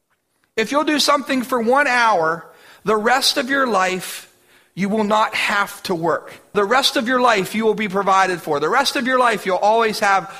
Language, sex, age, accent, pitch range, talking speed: English, male, 40-59, American, 205-255 Hz, 210 wpm